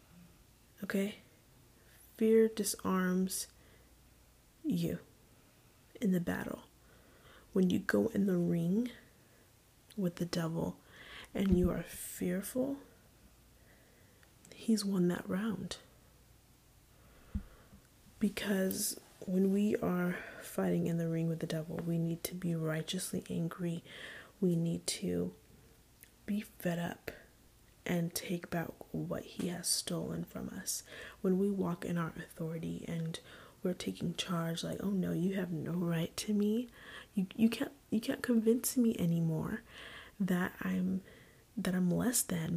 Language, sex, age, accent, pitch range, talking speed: English, female, 20-39, American, 170-220 Hz, 125 wpm